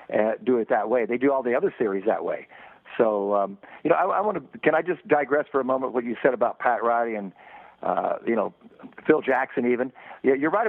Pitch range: 120-145 Hz